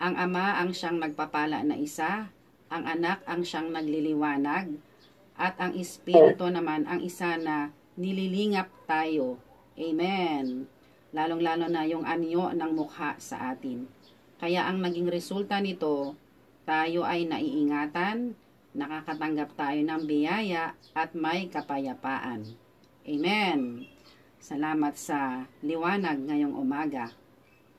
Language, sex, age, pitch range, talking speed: Filipino, female, 40-59, 150-180 Hz, 110 wpm